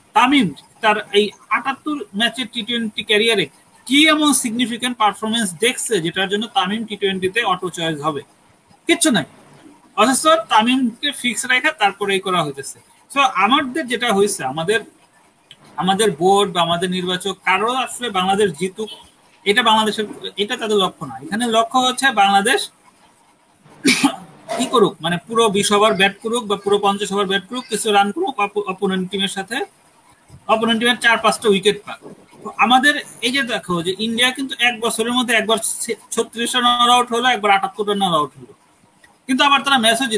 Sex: male